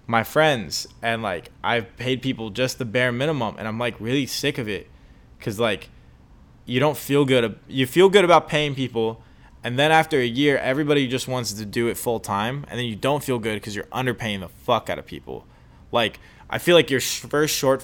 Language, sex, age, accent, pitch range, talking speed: English, male, 20-39, American, 105-130 Hz, 210 wpm